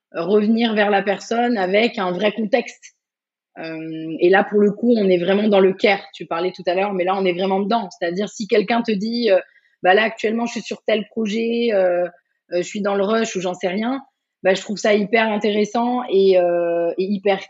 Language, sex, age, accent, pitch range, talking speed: French, female, 20-39, French, 180-220 Hz, 225 wpm